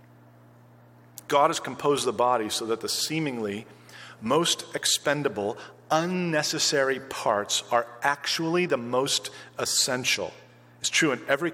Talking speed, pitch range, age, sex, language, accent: 115 wpm, 125-160 Hz, 40-59, male, English, American